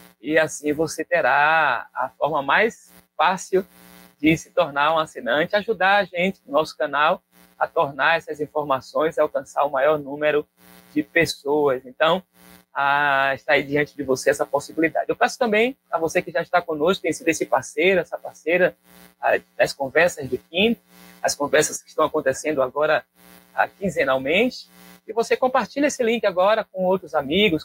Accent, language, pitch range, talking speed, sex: Brazilian, Portuguese, 125-185 Hz, 160 wpm, male